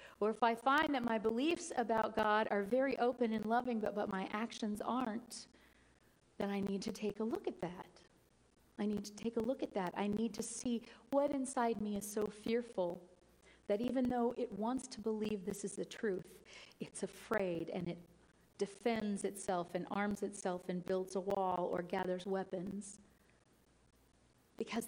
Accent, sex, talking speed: American, female, 180 wpm